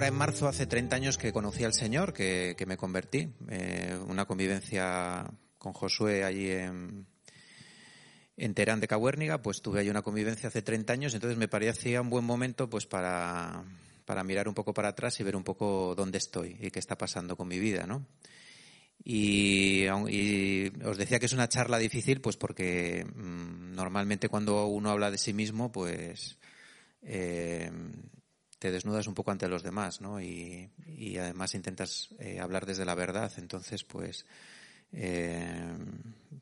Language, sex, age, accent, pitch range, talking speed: Spanish, male, 30-49, Spanish, 95-110 Hz, 165 wpm